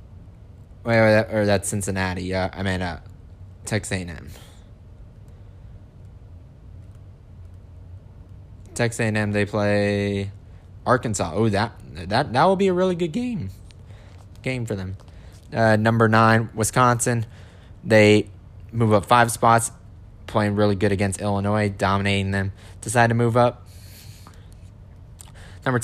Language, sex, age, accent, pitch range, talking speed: English, male, 20-39, American, 95-110 Hz, 130 wpm